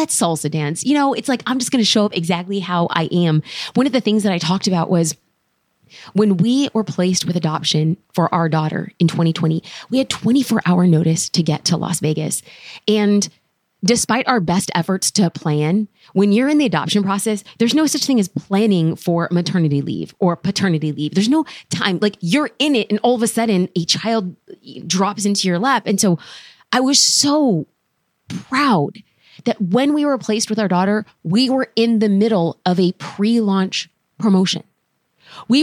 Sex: female